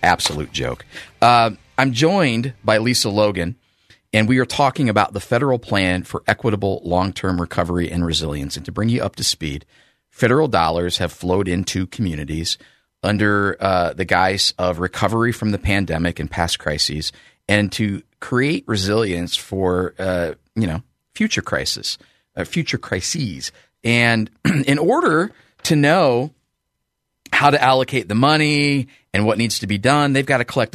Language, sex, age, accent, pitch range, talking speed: English, male, 30-49, American, 90-120 Hz, 155 wpm